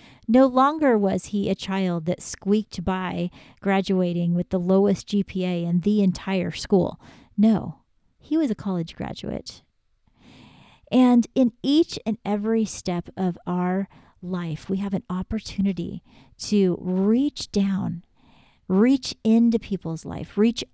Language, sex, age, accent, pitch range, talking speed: English, female, 40-59, American, 180-215 Hz, 130 wpm